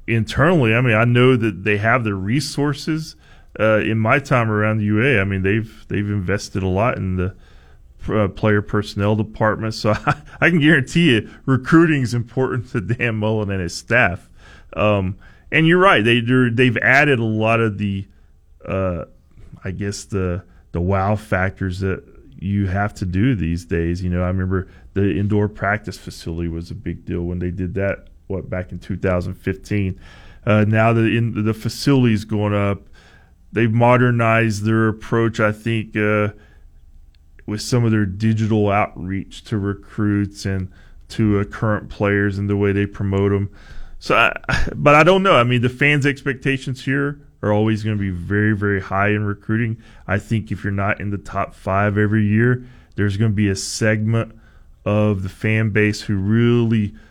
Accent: American